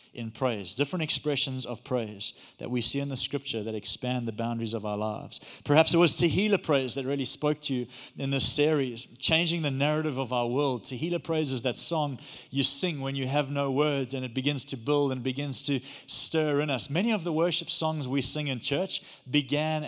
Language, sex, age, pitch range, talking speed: English, male, 30-49, 130-155 Hz, 215 wpm